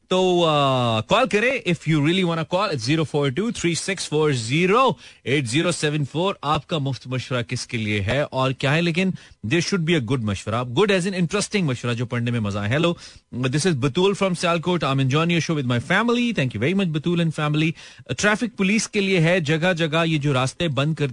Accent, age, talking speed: native, 30-49, 180 wpm